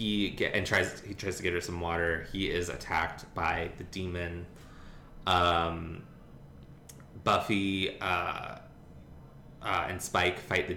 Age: 20-39